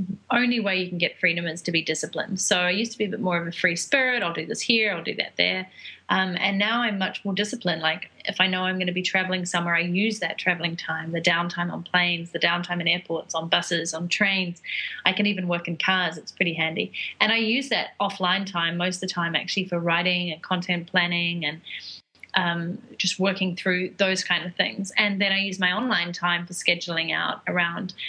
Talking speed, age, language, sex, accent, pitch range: 235 wpm, 30-49, English, female, Australian, 175-200 Hz